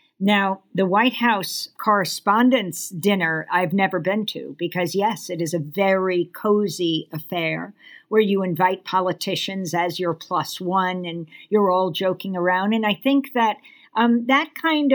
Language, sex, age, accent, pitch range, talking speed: English, female, 50-69, American, 185-230 Hz, 155 wpm